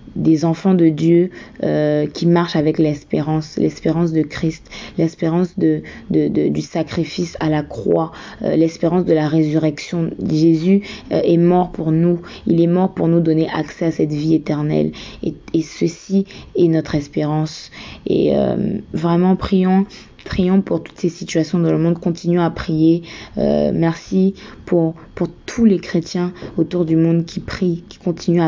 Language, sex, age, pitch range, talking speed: French, female, 20-39, 160-175 Hz, 165 wpm